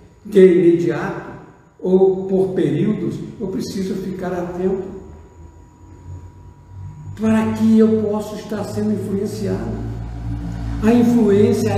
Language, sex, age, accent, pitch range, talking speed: Portuguese, male, 60-79, Brazilian, 155-255 Hz, 90 wpm